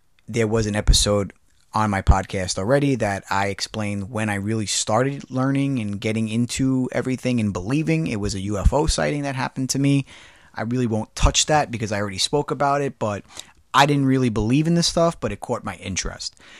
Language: English